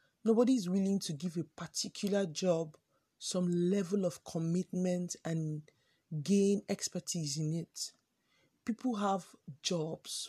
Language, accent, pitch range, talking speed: English, Nigerian, 160-200 Hz, 115 wpm